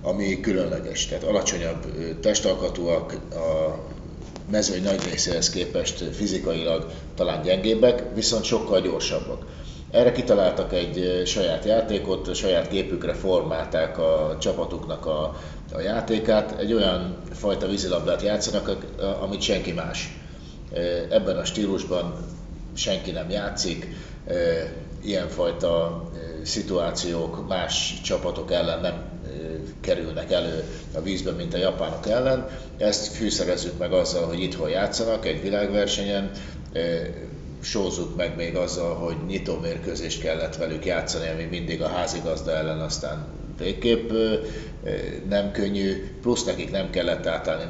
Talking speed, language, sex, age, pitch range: 115 wpm, Hungarian, male, 50-69, 80-100 Hz